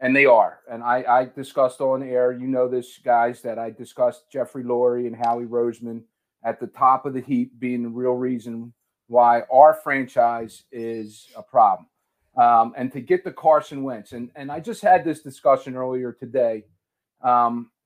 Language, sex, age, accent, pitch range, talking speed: English, male, 40-59, American, 120-155 Hz, 180 wpm